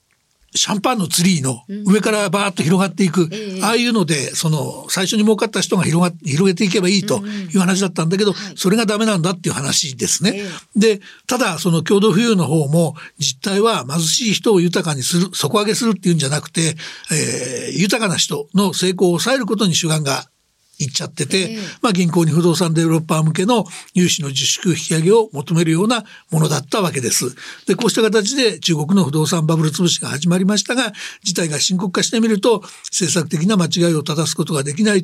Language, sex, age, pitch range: Japanese, male, 60-79, 165-205 Hz